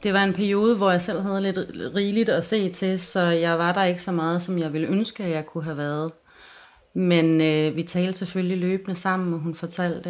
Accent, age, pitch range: native, 30-49, 165-195 Hz